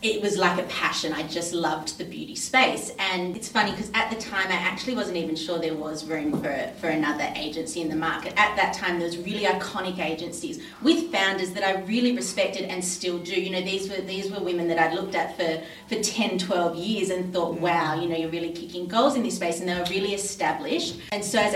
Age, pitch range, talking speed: 30-49, 170-210 Hz, 240 wpm